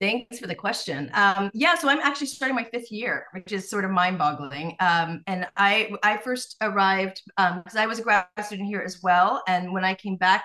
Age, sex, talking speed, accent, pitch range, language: 30-49, female, 225 wpm, American, 180-225 Hz, English